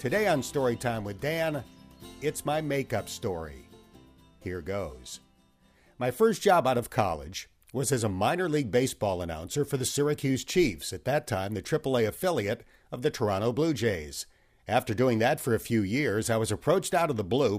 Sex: male